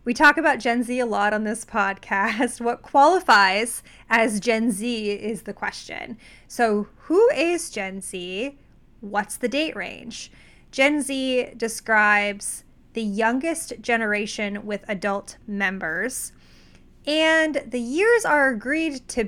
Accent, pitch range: American, 210-270 Hz